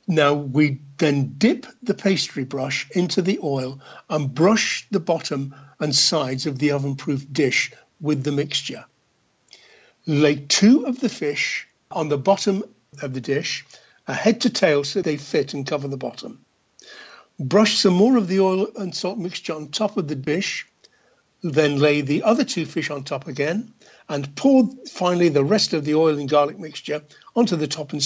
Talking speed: 175 wpm